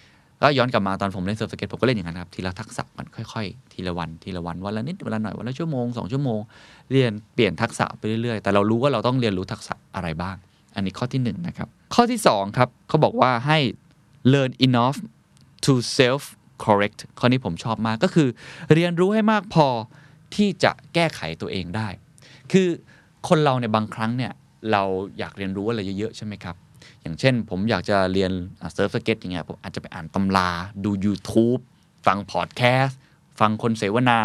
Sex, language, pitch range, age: male, Thai, 100-135 Hz, 20-39